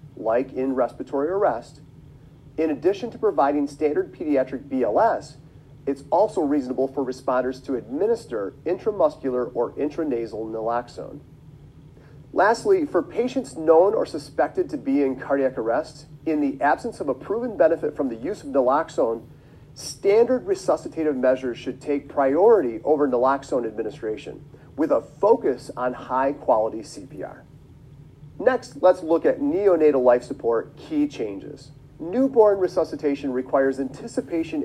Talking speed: 125 wpm